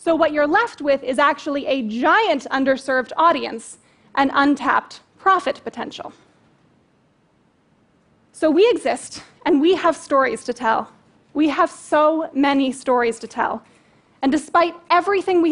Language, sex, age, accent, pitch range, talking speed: Russian, female, 20-39, American, 270-330 Hz, 135 wpm